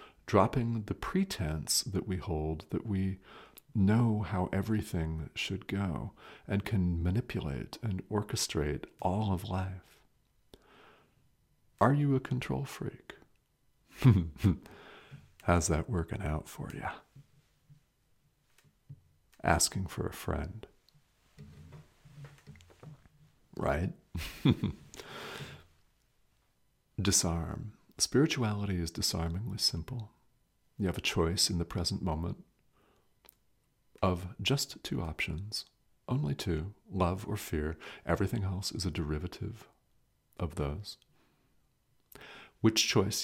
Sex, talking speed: male, 95 wpm